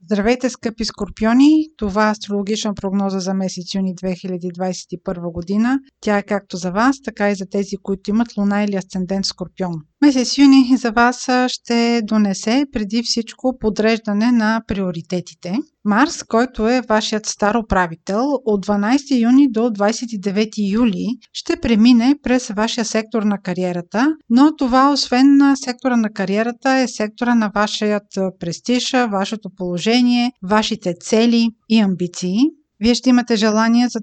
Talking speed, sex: 140 wpm, female